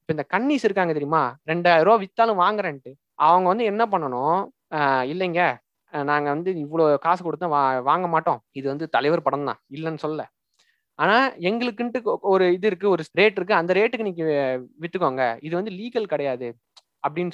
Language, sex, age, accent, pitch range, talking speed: Tamil, male, 20-39, native, 160-225 Hz, 150 wpm